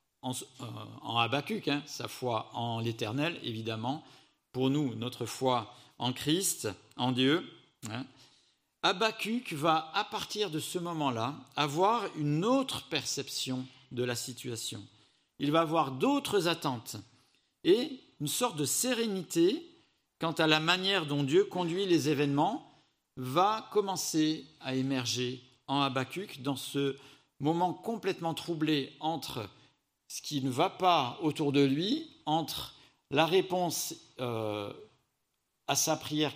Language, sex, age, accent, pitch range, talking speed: French, male, 50-69, French, 130-165 Hz, 125 wpm